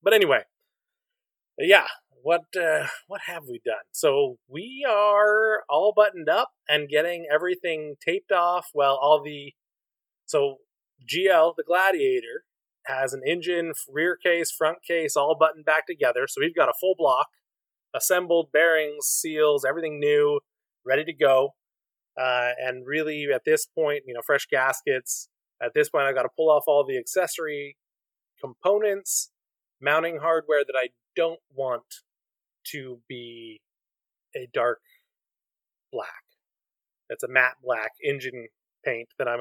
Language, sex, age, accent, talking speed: English, male, 20-39, American, 145 wpm